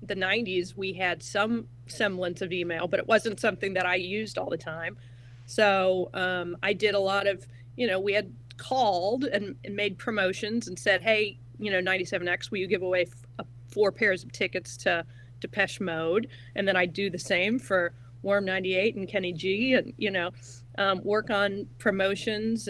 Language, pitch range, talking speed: English, 160-195 Hz, 190 wpm